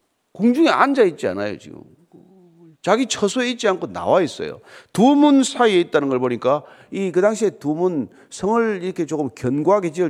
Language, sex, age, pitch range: Korean, male, 40-59, 160-245 Hz